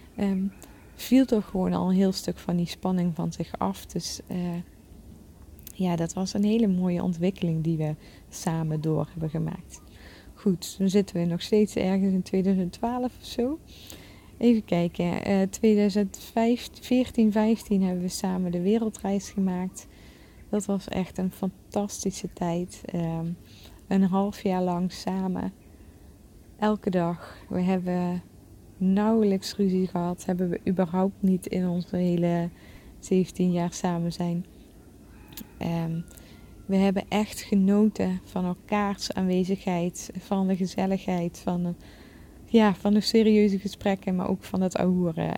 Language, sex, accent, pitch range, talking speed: English, female, Dutch, 175-200 Hz, 135 wpm